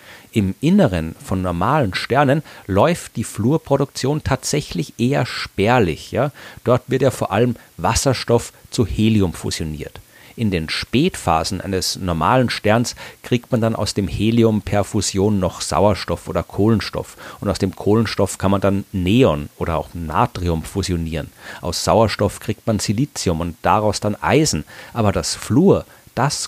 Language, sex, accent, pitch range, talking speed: German, male, German, 95-120 Hz, 145 wpm